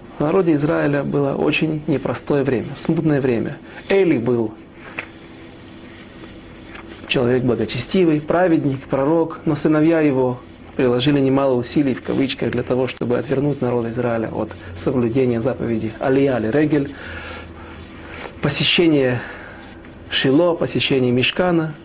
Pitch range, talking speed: 115-155 Hz, 105 wpm